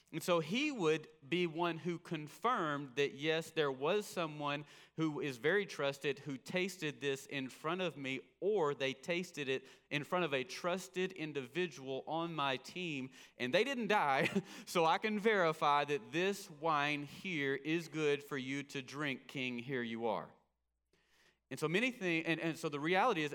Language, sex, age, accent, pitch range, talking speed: English, male, 30-49, American, 130-165 Hz, 175 wpm